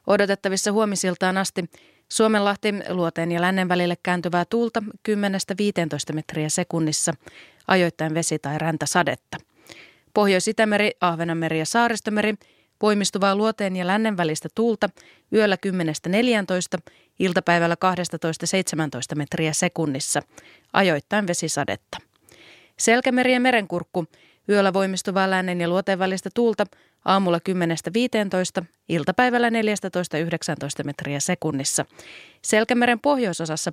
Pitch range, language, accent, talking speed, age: 165-205 Hz, Finnish, native, 95 wpm, 30-49